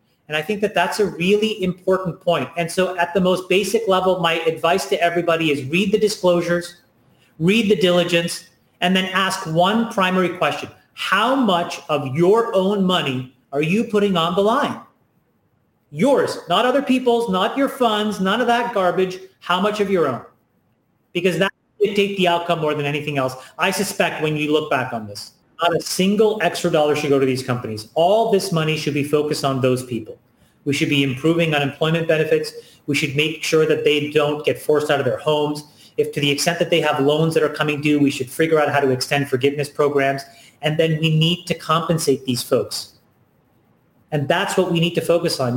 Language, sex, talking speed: English, male, 205 wpm